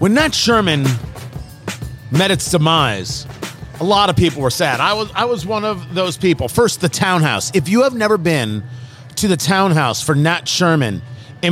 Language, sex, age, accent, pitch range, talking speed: English, male, 40-59, American, 135-190 Hz, 180 wpm